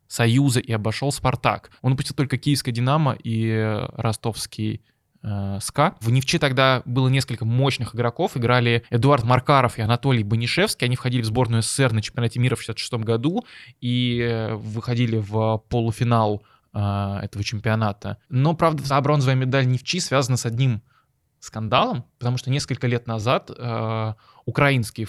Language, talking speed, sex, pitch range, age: Russian, 145 wpm, male, 110-135 Hz, 20-39